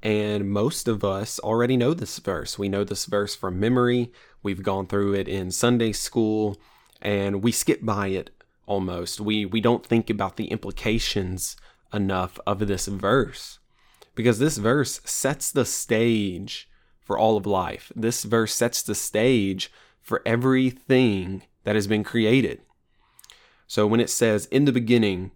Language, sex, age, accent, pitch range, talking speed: English, male, 20-39, American, 100-115 Hz, 155 wpm